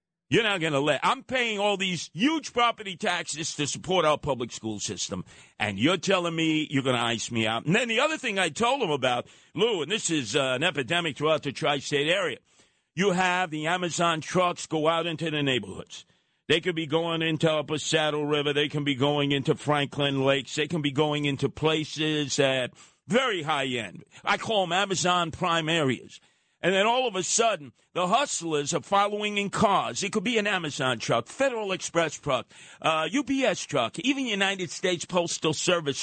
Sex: male